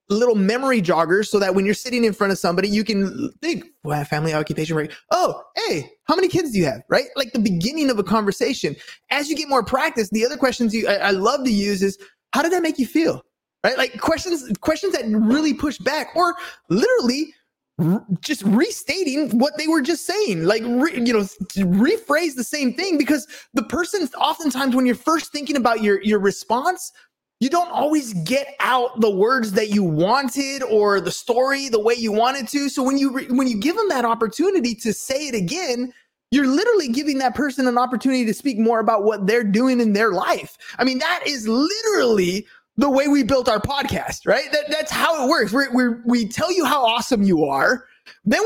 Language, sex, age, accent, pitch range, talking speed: English, male, 20-39, American, 215-295 Hz, 210 wpm